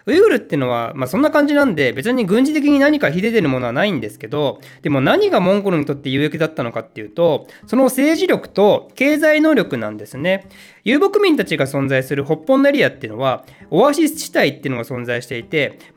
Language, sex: Japanese, male